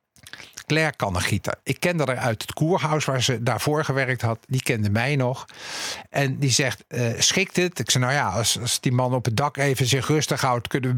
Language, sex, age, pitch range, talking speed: Dutch, male, 50-69, 120-150 Hz, 215 wpm